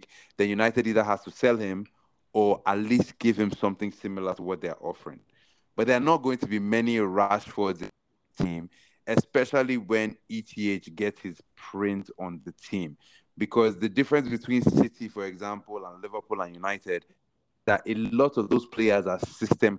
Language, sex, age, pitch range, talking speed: English, male, 30-49, 95-120 Hz, 175 wpm